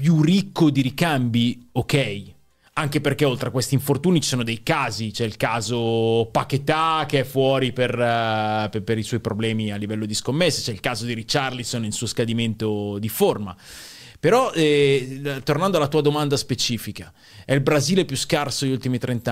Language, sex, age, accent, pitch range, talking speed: Italian, male, 30-49, native, 105-140 Hz, 180 wpm